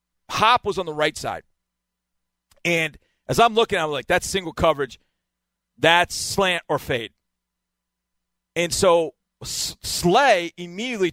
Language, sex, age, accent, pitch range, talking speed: English, male, 40-59, American, 150-205 Hz, 125 wpm